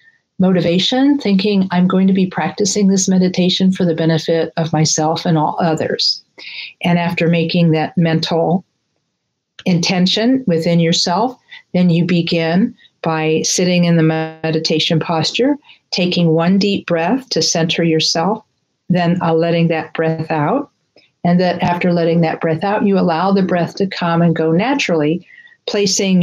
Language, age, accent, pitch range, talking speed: English, 50-69, American, 165-195 Hz, 145 wpm